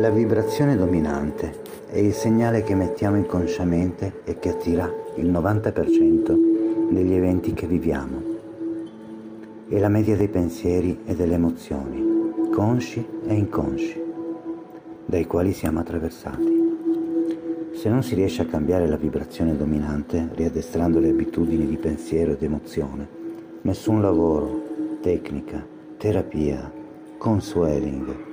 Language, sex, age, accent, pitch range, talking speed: Italian, male, 50-69, native, 85-120 Hz, 115 wpm